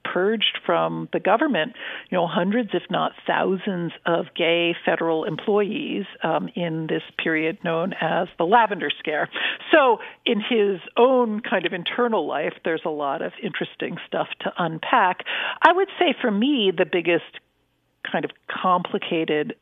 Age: 50-69